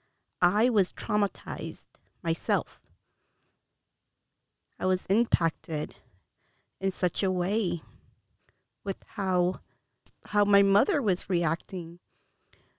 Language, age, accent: English, 30-49, American